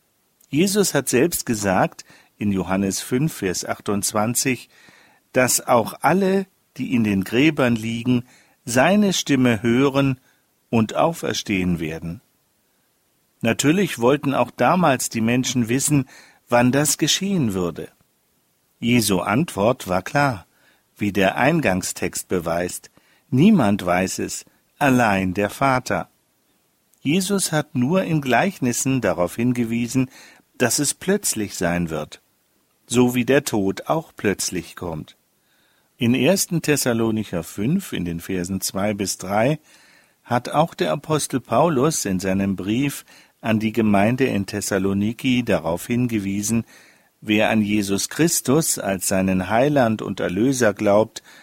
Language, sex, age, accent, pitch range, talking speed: German, male, 50-69, German, 100-140 Hz, 120 wpm